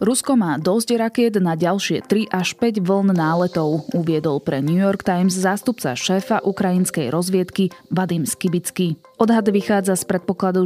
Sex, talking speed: female, 145 wpm